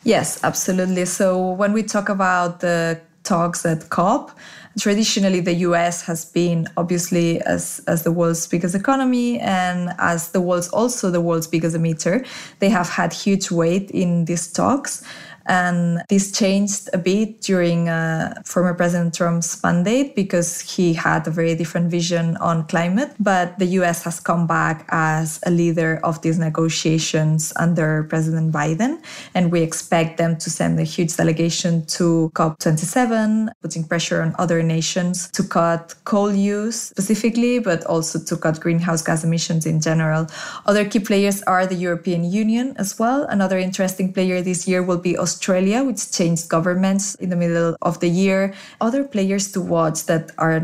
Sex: female